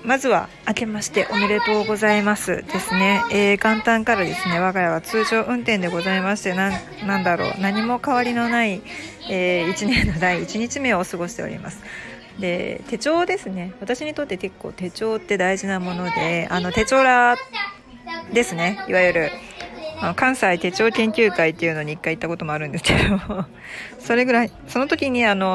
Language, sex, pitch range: Japanese, female, 175-230 Hz